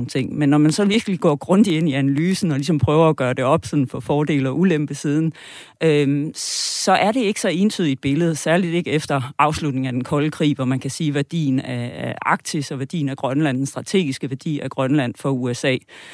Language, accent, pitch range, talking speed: Danish, native, 140-165 Hz, 205 wpm